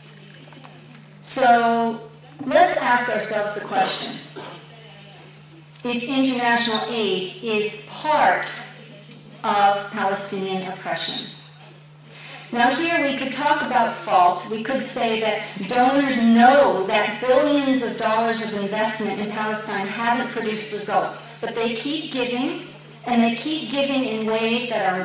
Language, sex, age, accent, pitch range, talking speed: English, female, 50-69, American, 205-255 Hz, 120 wpm